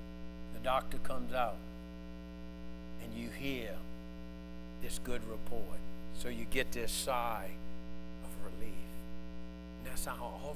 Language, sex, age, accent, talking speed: English, male, 60-79, American, 115 wpm